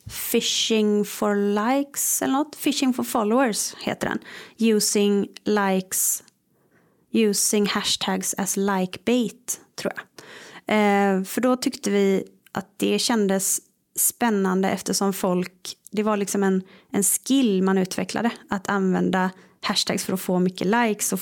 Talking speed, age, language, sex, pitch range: 135 wpm, 30-49, Swedish, female, 190-220 Hz